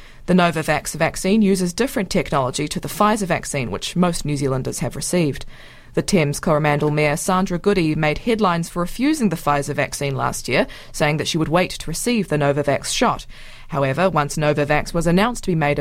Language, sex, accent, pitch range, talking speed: English, female, Australian, 145-190 Hz, 185 wpm